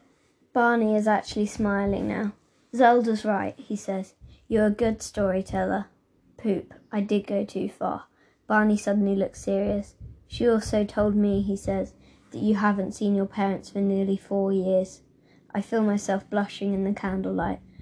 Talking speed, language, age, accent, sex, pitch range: 155 wpm, English, 20-39, British, female, 195-210 Hz